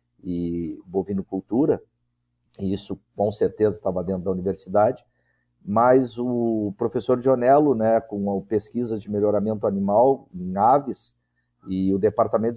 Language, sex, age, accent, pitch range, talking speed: Portuguese, male, 50-69, Brazilian, 95-120 Hz, 125 wpm